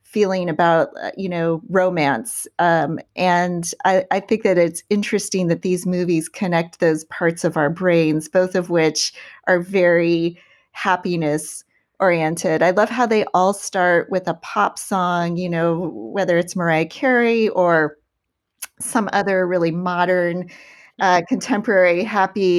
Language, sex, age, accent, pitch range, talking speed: English, female, 30-49, American, 170-205 Hz, 140 wpm